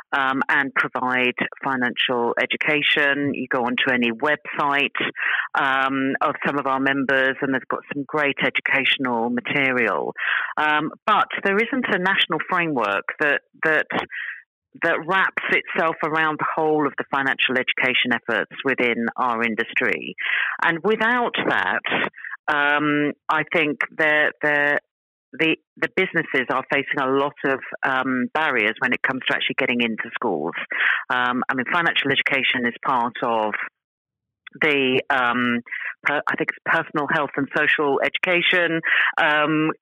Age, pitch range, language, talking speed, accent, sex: 40-59, 130-160 Hz, English, 140 wpm, British, female